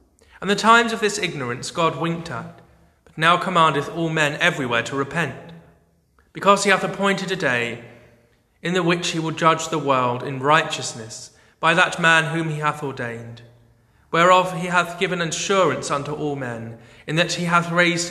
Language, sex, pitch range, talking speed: English, male, 115-165 Hz, 175 wpm